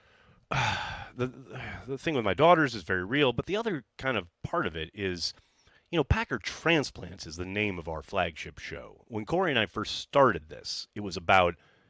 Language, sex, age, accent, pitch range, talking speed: English, male, 30-49, American, 90-125 Hz, 195 wpm